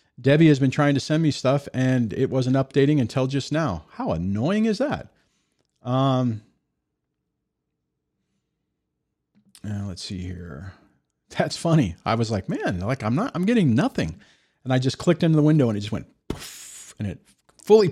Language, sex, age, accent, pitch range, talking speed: English, male, 40-59, American, 100-140 Hz, 165 wpm